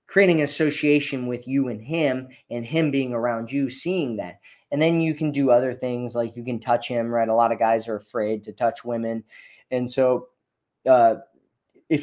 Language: English